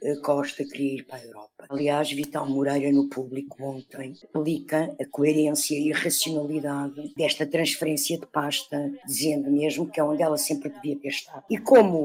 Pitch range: 145-195 Hz